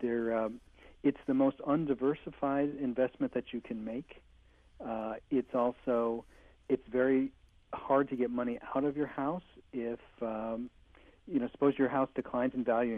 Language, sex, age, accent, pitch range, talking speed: English, male, 50-69, American, 115-130 Hz, 155 wpm